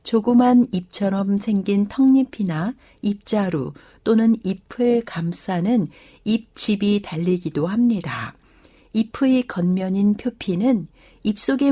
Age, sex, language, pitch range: 60-79, female, Korean, 175-230 Hz